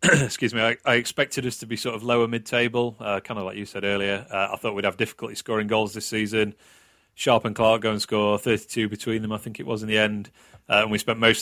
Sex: male